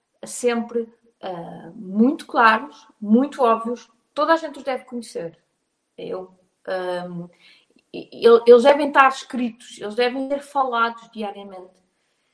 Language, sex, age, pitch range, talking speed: Portuguese, female, 20-39, 215-280 Hz, 95 wpm